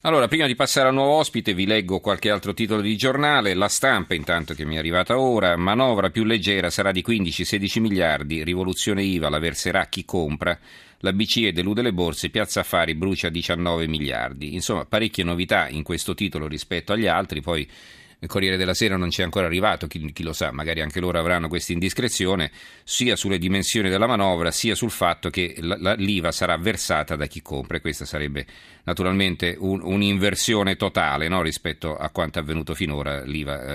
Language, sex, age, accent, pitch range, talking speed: Italian, male, 40-59, native, 75-100 Hz, 180 wpm